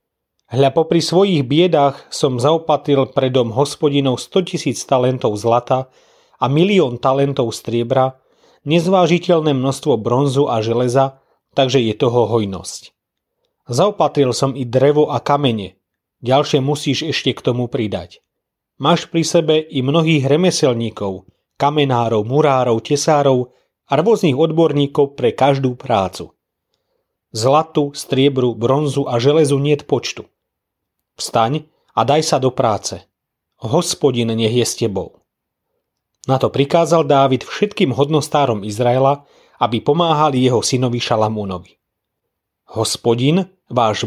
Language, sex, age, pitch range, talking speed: Slovak, male, 30-49, 120-150 Hz, 115 wpm